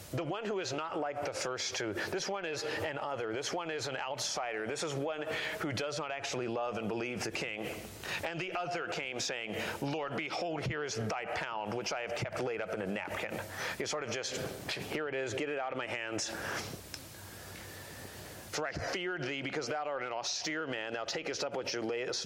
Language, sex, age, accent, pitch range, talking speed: English, male, 40-59, American, 115-160 Hz, 215 wpm